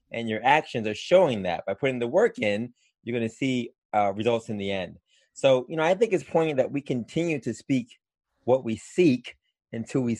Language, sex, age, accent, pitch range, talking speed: English, male, 30-49, American, 105-125 Hz, 210 wpm